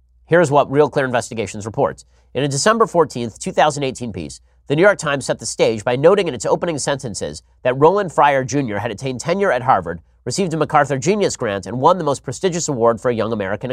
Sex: male